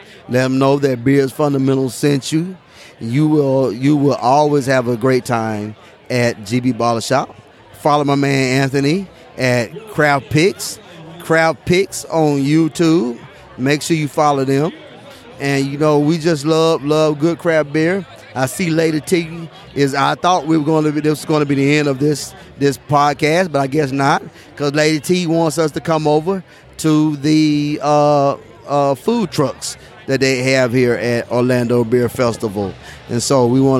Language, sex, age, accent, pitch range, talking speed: English, male, 30-49, American, 125-155 Hz, 180 wpm